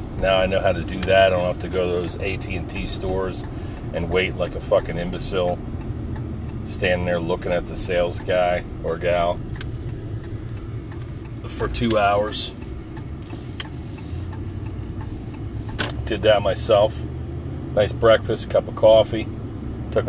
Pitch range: 95-115 Hz